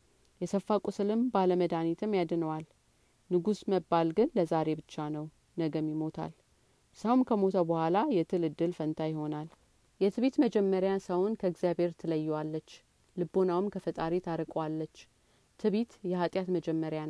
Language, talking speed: Amharic, 100 wpm